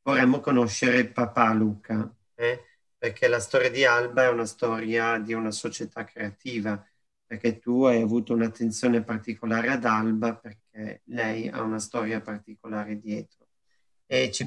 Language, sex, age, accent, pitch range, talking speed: Italian, male, 40-59, native, 115-155 Hz, 140 wpm